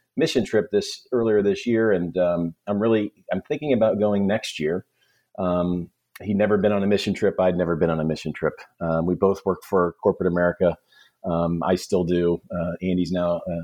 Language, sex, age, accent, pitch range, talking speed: English, male, 40-59, American, 85-100 Hz, 200 wpm